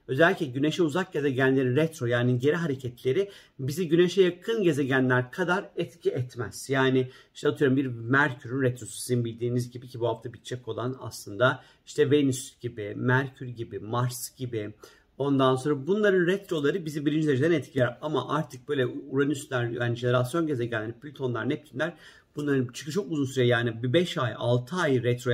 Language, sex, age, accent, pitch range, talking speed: Turkish, male, 50-69, native, 125-160 Hz, 155 wpm